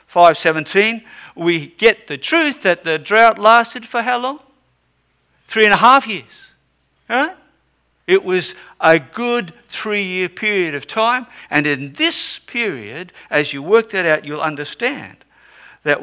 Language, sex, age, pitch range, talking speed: English, male, 60-79, 110-175 Hz, 135 wpm